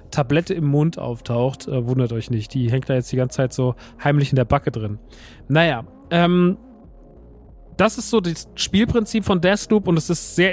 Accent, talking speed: German, 190 wpm